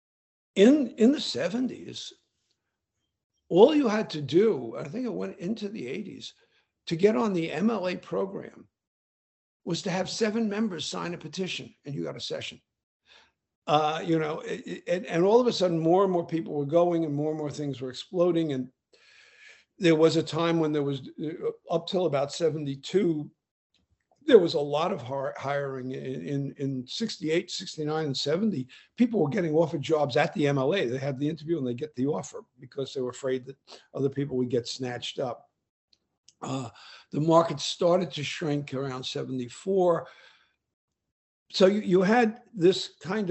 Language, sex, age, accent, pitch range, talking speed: English, male, 60-79, American, 140-185 Hz, 170 wpm